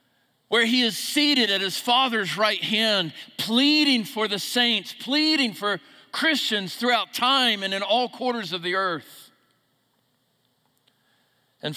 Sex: male